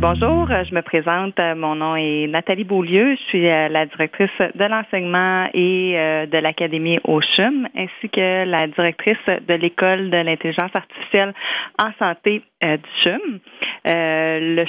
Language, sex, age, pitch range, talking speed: French, female, 30-49, 160-195 Hz, 140 wpm